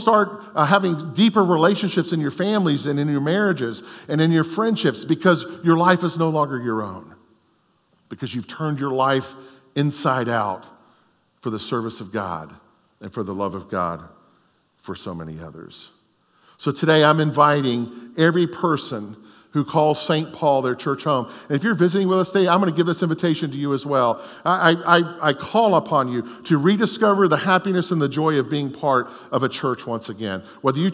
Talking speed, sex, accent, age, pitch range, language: 195 wpm, male, American, 50-69, 145-195 Hz, English